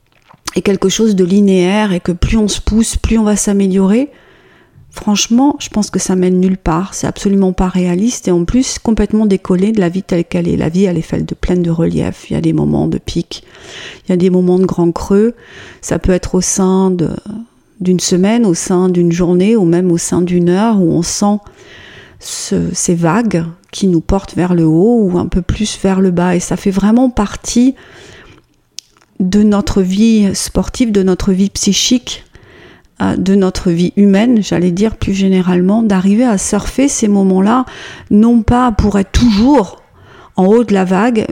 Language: French